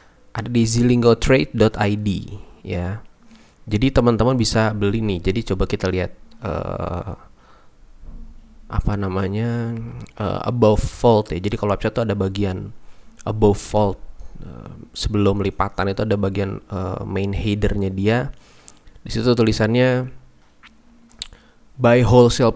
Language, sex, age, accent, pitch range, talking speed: Indonesian, male, 20-39, native, 95-115 Hz, 115 wpm